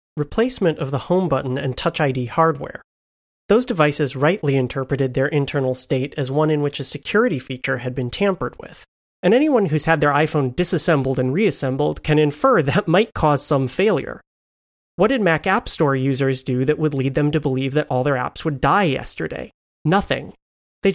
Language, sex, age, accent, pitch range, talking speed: English, male, 30-49, American, 135-170 Hz, 185 wpm